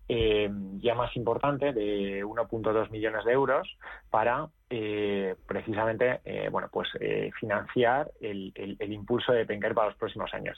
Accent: Spanish